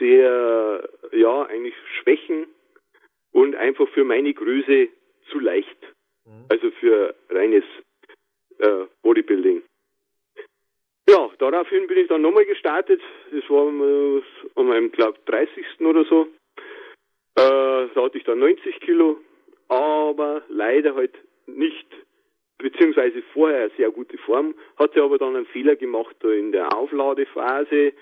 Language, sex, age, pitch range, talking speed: German, male, 40-59, 330-405 Hz, 120 wpm